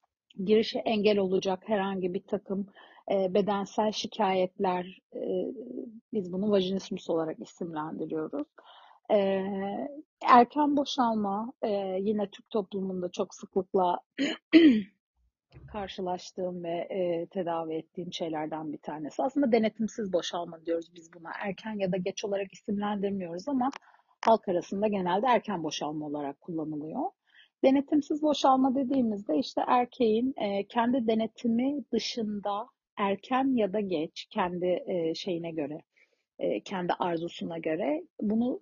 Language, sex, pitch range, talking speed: Turkish, female, 180-240 Hz, 105 wpm